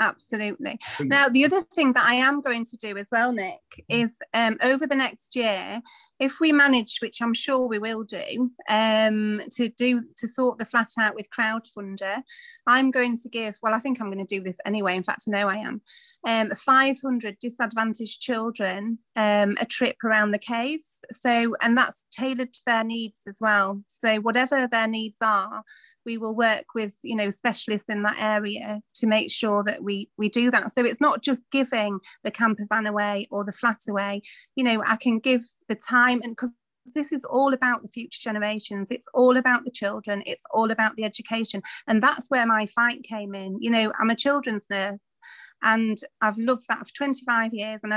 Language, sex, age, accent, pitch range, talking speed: English, female, 30-49, British, 215-250 Hz, 200 wpm